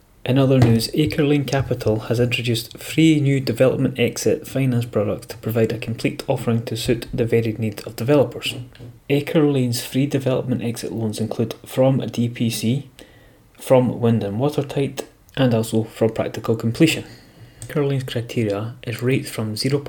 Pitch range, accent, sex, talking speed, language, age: 110-130 Hz, British, male, 155 wpm, English, 30-49